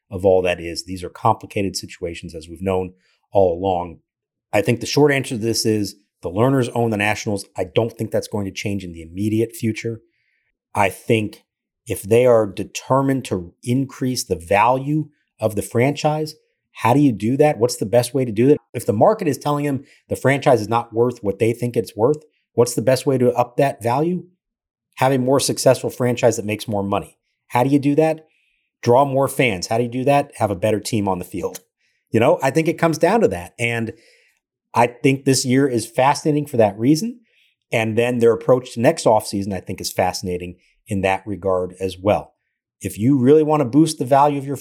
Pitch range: 105-135 Hz